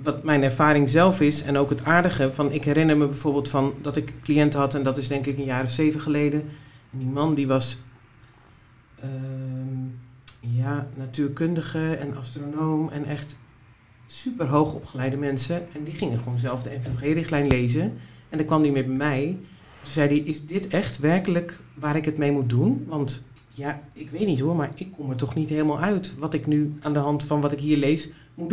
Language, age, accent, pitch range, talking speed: Dutch, 40-59, Dutch, 135-160 Hz, 210 wpm